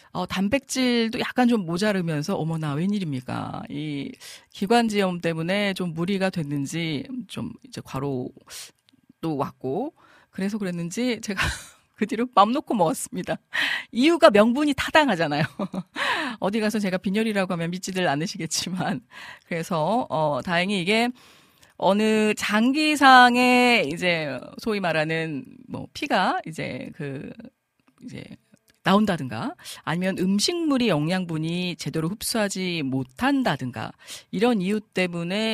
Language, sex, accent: Korean, female, native